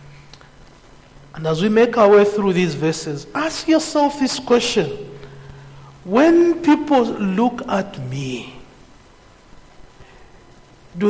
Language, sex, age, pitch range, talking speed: English, male, 60-79, 170-245 Hz, 105 wpm